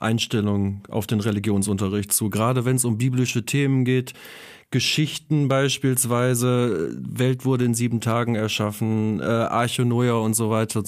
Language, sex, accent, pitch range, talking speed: German, male, German, 120-140 Hz, 150 wpm